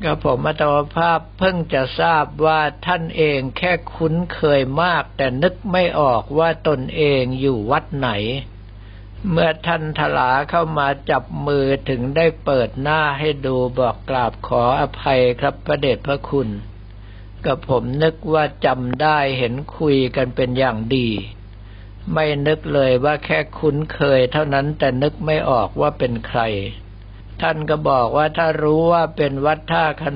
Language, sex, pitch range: Thai, male, 120-150 Hz